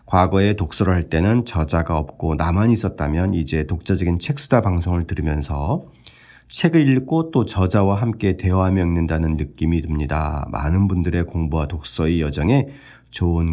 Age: 40-59